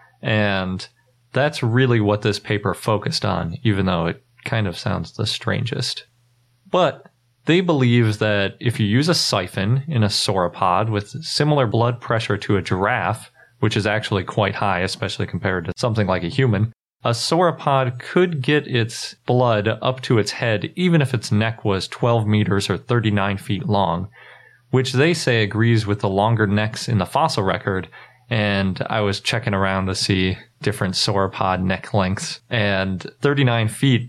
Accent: American